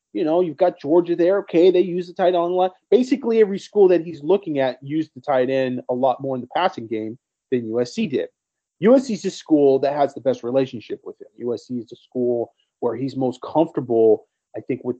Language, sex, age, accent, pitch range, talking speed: English, male, 30-49, American, 125-180 Hz, 230 wpm